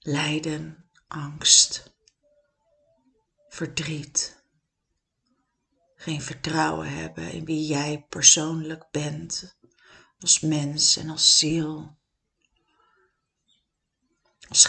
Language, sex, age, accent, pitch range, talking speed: Dutch, female, 40-59, Dutch, 155-185 Hz, 70 wpm